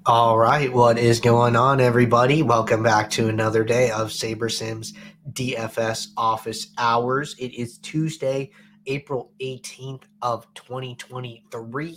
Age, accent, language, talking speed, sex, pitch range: 20-39, American, English, 125 wpm, male, 120-135 Hz